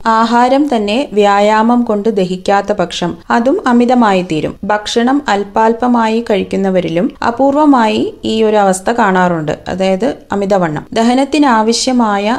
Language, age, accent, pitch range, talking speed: Malayalam, 30-49, native, 185-225 Hz, 95 wpm